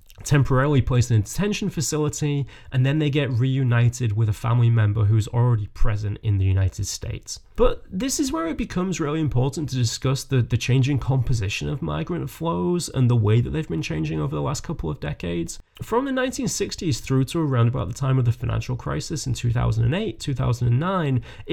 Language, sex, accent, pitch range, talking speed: English, male, British, 115-160 Hz, 185 wpm